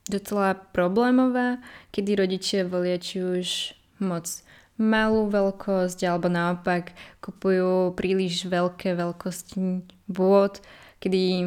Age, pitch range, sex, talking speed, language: 20-39, 180-200 Hz, female, 95 wpm, Slovak